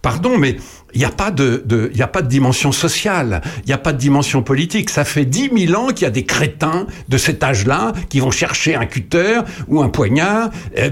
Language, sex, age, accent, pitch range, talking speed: French, male, 60-79, French, 115-170 Hz, 235 wpm